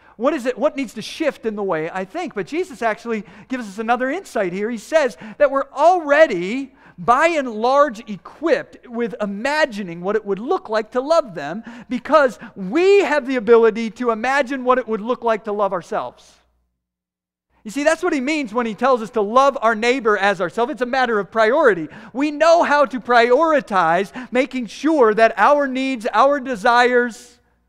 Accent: American